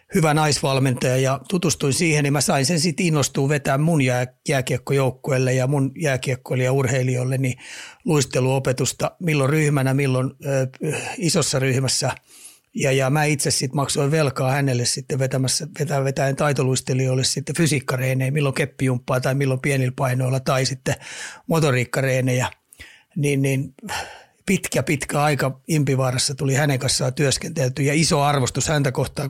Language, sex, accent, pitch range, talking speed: Finnish, male, native, 130-150 Hz, 130 wpm